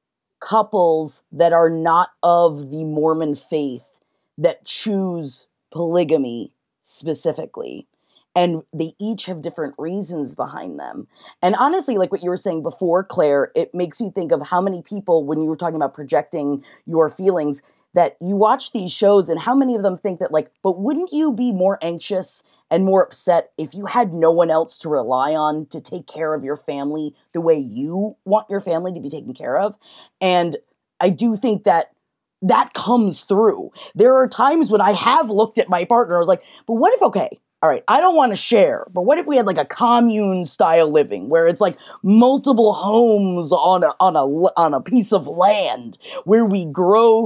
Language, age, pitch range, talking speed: English, 20-39, 165-225 Hz, 195 wpm